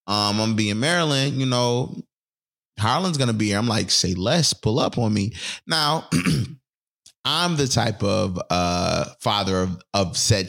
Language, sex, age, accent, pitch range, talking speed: English, male, 20-39, American, 95-115 Hz, 160 wpm